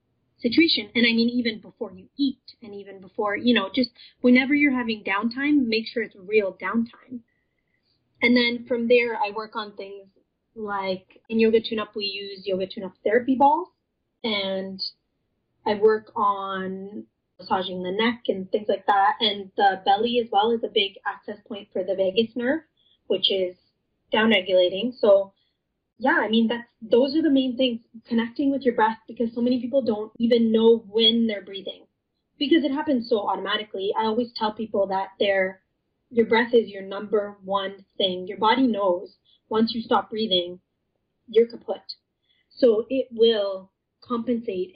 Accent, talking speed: American, 165 wpm